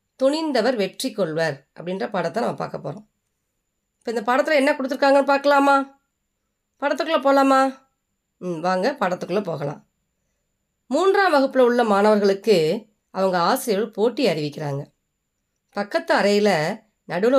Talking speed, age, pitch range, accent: 105 wpm, 30-49, 180-260 Hz, native